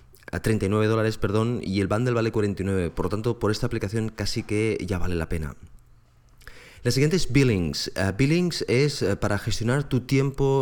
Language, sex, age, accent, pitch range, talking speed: Spanish, male, 20-39, Spanish, 95-115 Hz, 185 wpm